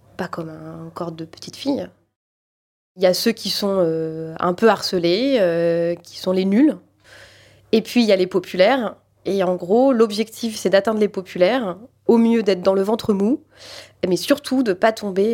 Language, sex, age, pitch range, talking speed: French, female, 20-39, 180-225 Hz, 195 wpm